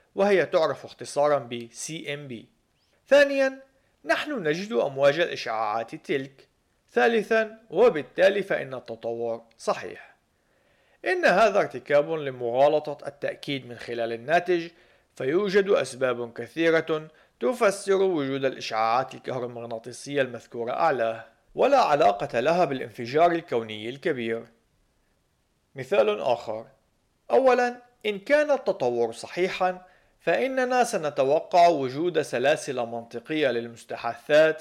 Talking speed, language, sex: 90 wpm, Arabic, male